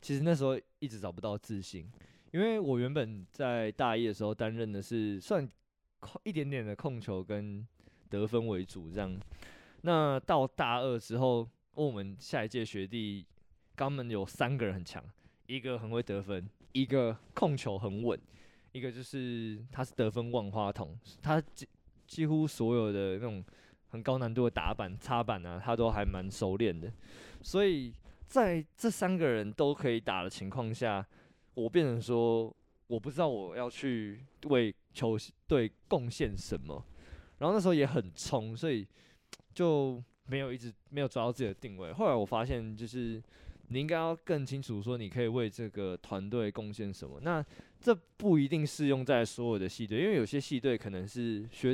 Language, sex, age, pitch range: Chinese, male, 20-39, 105-135 Hz